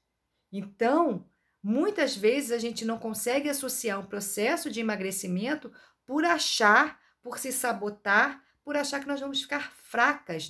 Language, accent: Portuguese, Brazilian